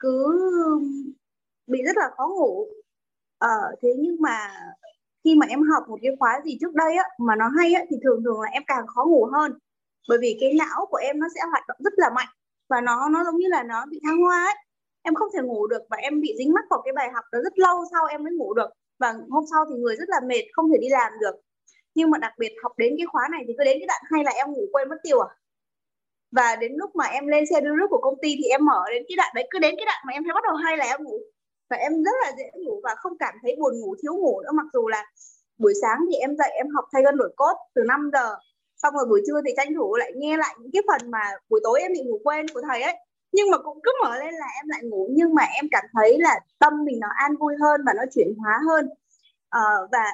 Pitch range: 260-355 Hz